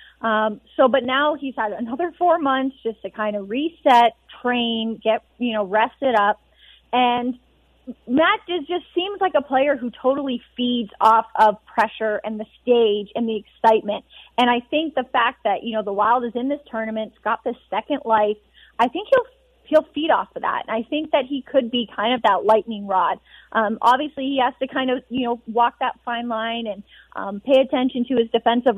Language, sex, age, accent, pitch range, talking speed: English, female, 30-49, American, 220-265 Hz, 205 wpm